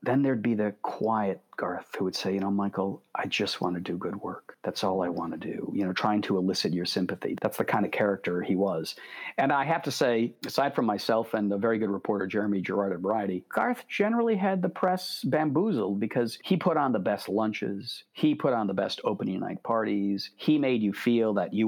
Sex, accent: male, American